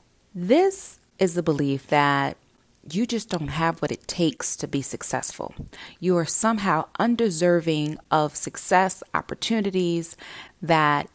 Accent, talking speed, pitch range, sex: American, 125 wpm, 155-190 Hz, female